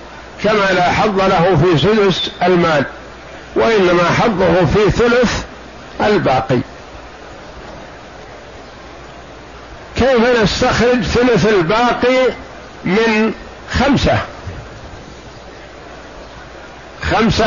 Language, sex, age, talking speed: Arabic, male, 60-79, 65 wpm